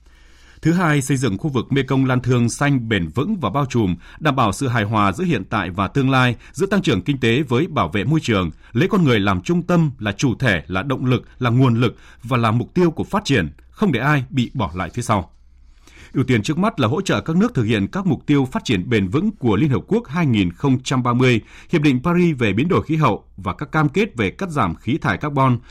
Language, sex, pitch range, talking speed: Vietnamese, male, 105-150 Hz, 250 wpm